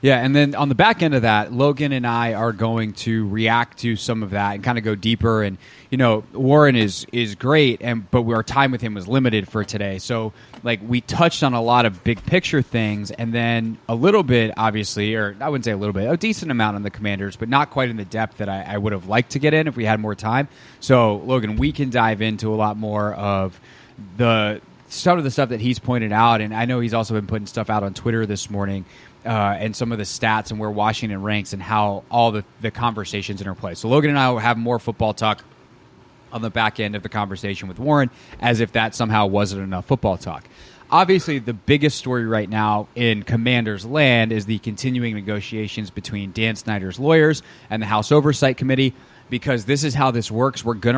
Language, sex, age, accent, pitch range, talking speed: English, male, 20-39, American, 105-130 Hz, 230 wpm